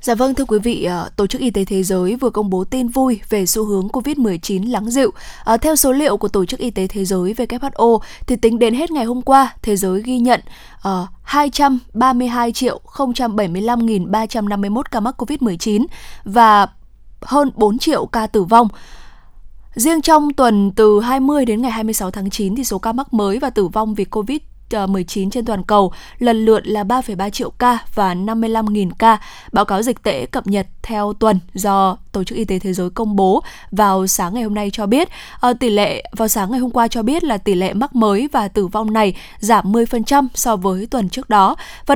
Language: Vietnamese